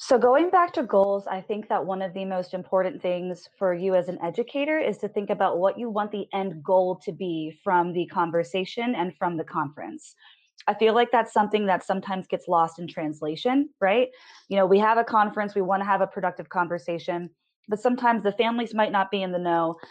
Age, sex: 20-39, female